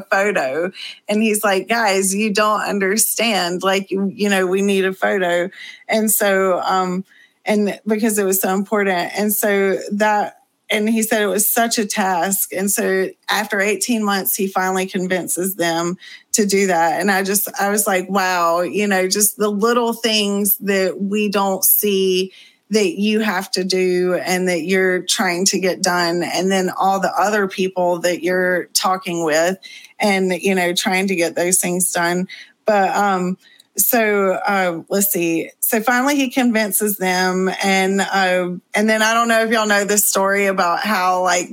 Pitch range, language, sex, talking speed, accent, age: 185-215 Hz, English, female, 180 wpm, American, 30-49